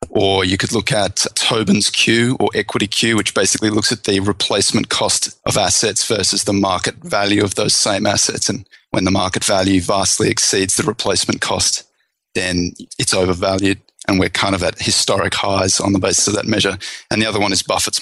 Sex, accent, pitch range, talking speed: male, Australian, 95-105 Hz, 195 wpm